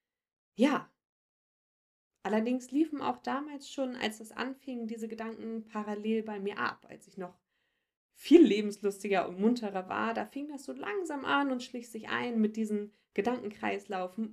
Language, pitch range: German, 190-240 Hz